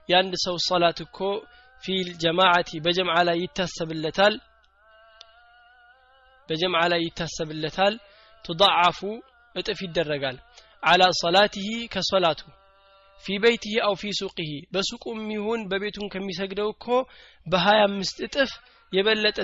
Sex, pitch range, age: male, 175-215 Hz, 20-39